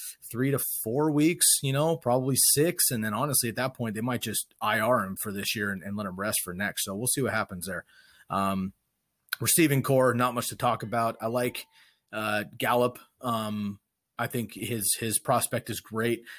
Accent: American